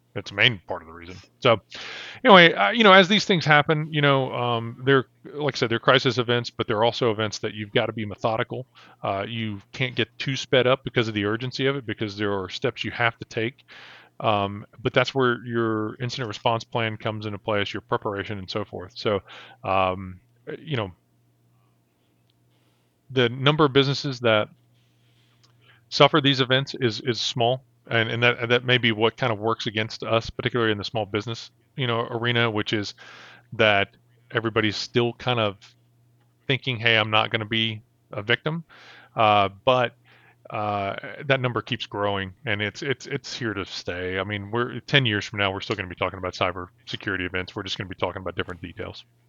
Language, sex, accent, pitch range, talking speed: English, male, American, 100-125 Hz, 195 wpm